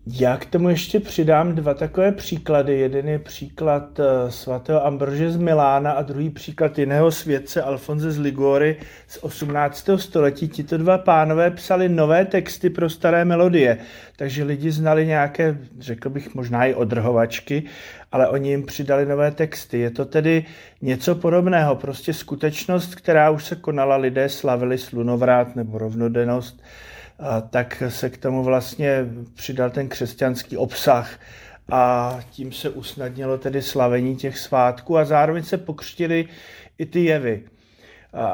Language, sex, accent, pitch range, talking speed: Czech, male, native, 130-160 Hz, 145 wpm